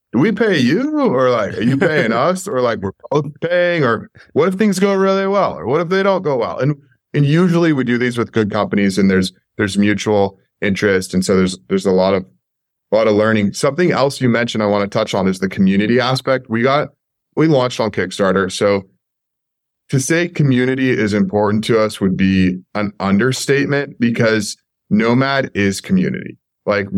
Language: English